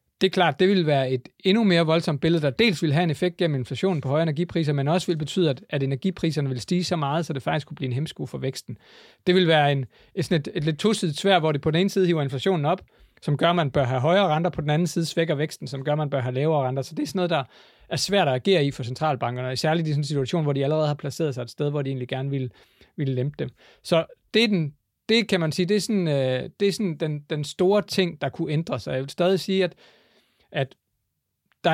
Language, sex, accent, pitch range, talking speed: Danish, male, native, 140-180 Hz, 280 wpm